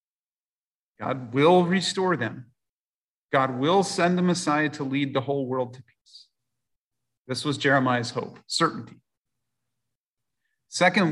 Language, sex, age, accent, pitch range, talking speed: English, male, 40-59, American, 130-170 Hz, 120 wpm